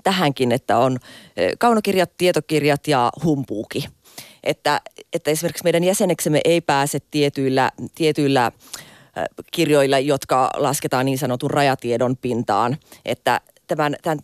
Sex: female